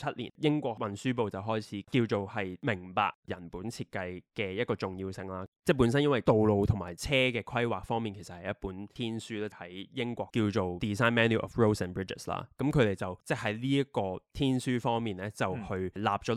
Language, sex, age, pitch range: Chinese, male, 20-39, 95-120 Hz